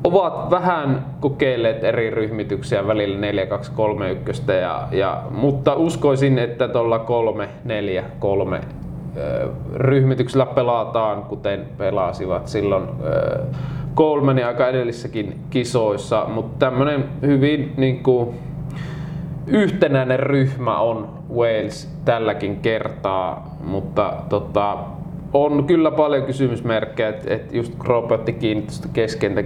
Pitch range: 110-140 Hz